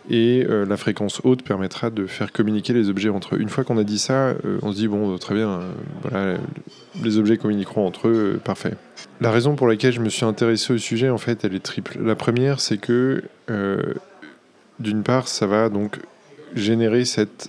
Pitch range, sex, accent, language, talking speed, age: 105-115 Hz, male, French, French, 205 wpm, 20-39